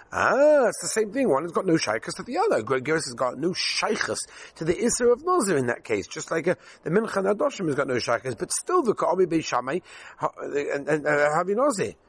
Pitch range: 120-175 Hz